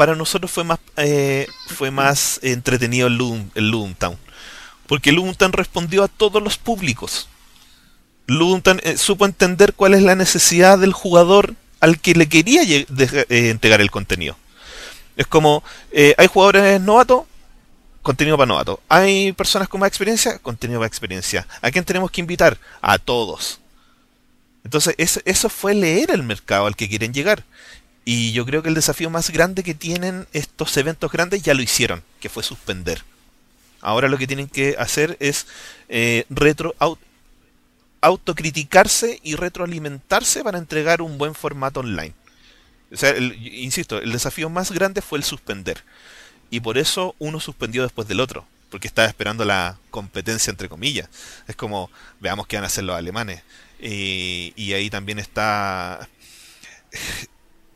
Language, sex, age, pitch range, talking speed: Spanish, male, 30-49, 120-185 Hz, 155 wpm